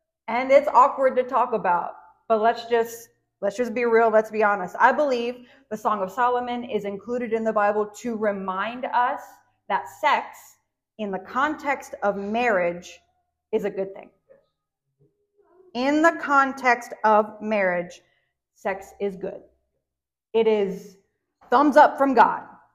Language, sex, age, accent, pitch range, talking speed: English, female, 30-49, American, 195-245 Hz, 145 wpm